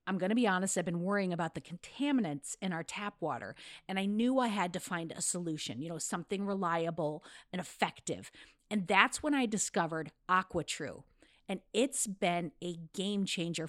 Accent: American